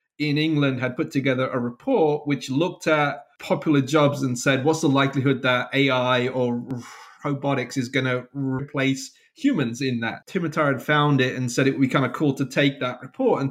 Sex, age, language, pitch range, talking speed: male, 30-49, English, 125-150 Hz, 200 wpm